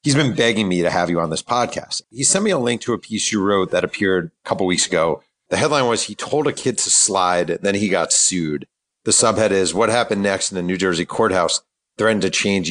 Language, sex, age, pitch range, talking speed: English, male, 40-59, 90-115 Hz, 255 wpm